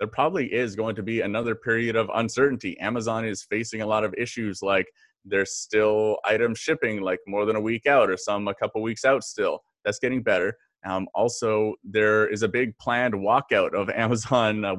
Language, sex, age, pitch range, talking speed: English, male, 20-39, 100-115 Hz, 200 wpm